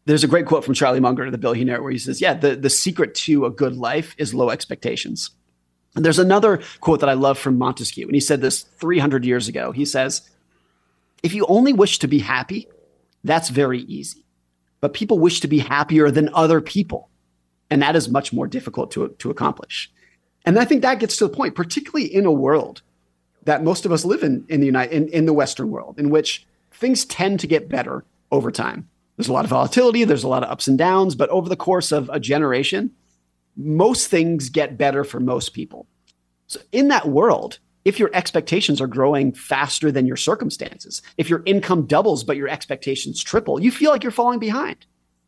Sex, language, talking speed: male, English, 205 wpm